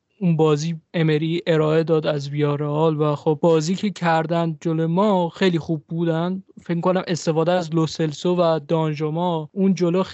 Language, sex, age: Persian, male, 20-39